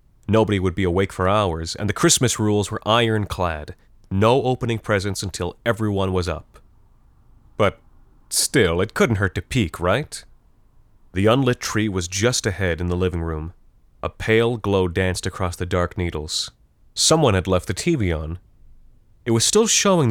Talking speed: 165 wpm